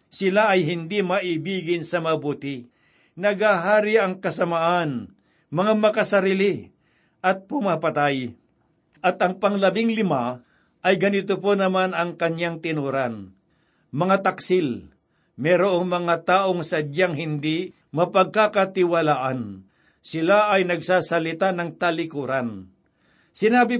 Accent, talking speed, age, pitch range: native, 95 wpm, 60-79, 165-200 Hz